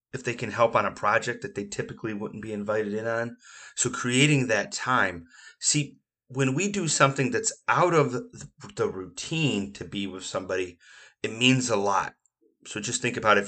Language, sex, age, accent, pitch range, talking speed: English, male, 30-49, American, 100-135 Hz, 185 wpm